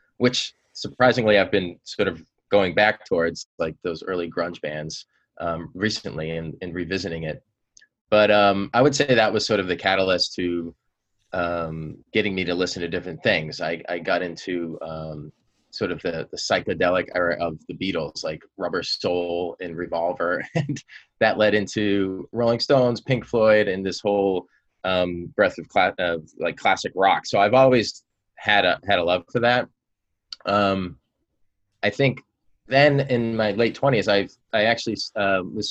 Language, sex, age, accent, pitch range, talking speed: English, male, 20-39, American, 85-105 Hz, 170 wpm